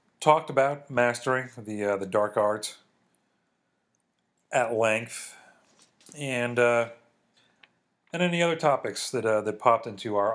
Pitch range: 100-125 Hz